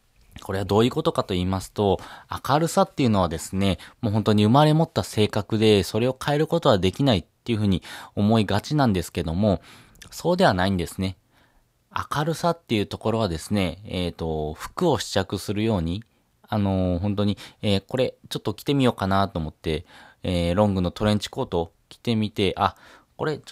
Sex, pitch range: male, 95-135 Hz